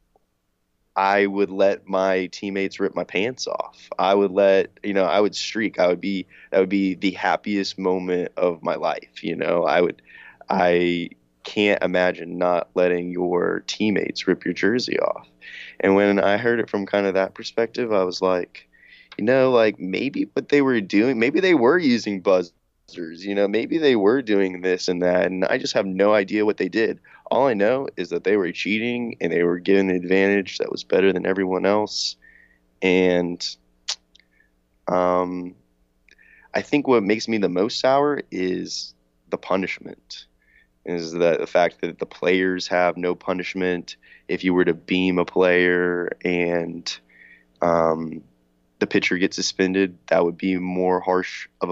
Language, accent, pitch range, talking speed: English, American, 85-100 Hz, 175 wpm